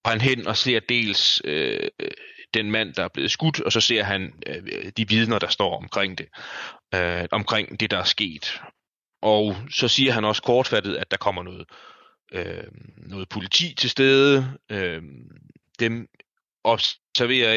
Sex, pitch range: male, 100-130 Hz